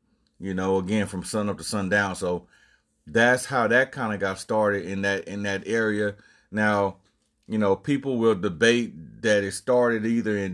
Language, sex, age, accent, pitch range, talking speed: English, male, 30-49, American, 95-115 Hz, 175 wpm